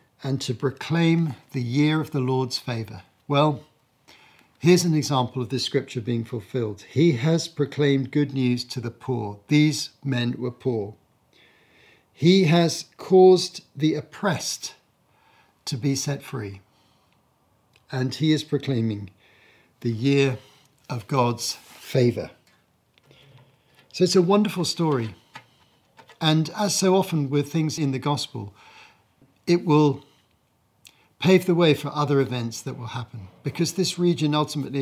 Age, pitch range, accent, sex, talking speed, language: 50-69, 120-150 Hz, British, male, 135 wpm, English